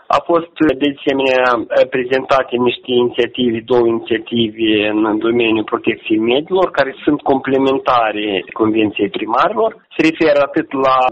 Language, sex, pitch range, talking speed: Romanian, male, 115-145 Hz, 120 wpm